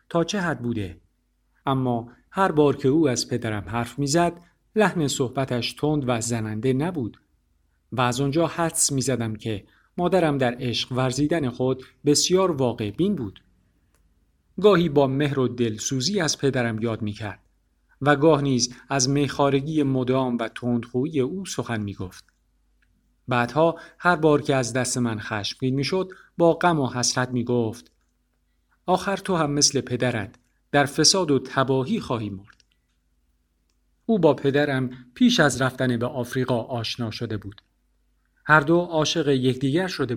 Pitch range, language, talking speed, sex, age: 115-150 Hz, Persian, 150 wpm, male, 50-69